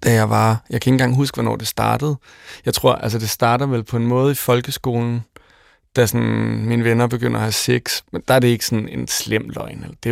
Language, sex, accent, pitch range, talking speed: Danish, male, native, 100-125 Hz, 245 wpm